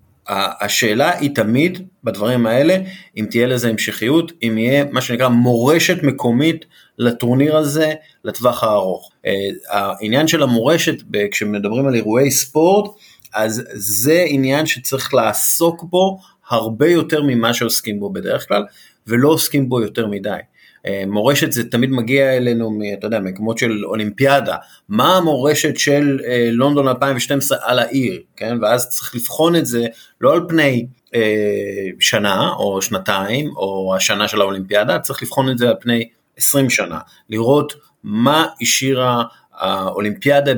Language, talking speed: Hebrew, 135 wpm